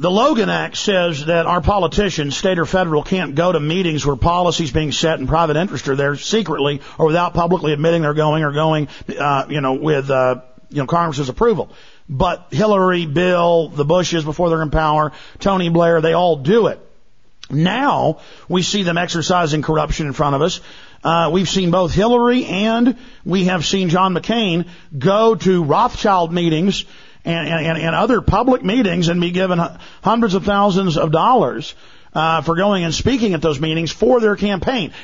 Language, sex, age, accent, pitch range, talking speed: English, male, 50-69, American, 160-200 Hz, 180 wpm